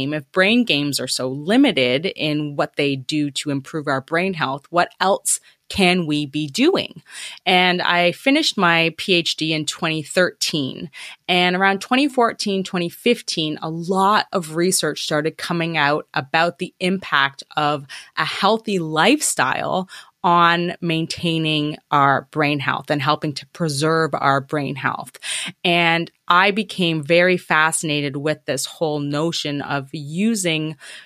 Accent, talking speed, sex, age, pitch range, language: American, 135 wpm, female, 20-39, 145-180 Hz, English